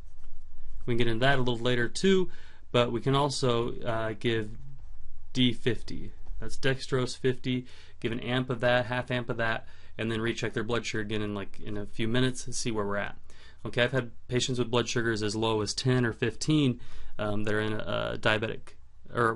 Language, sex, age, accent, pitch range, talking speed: English, male, 30-49, American, 105-125 Hz, 210 wpm